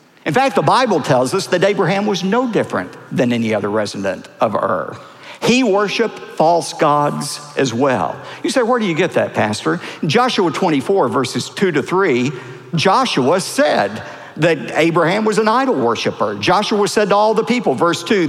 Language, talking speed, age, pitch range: English, 175 wpm, 50-69, 155-255 Hz